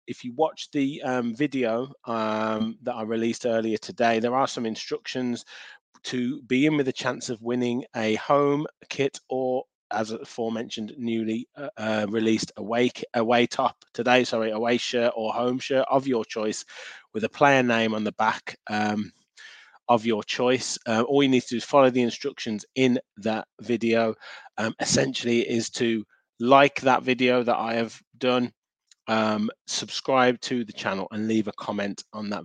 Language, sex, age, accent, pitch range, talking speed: English, male, 20-39, British, 110-125 Hz, 170 wpm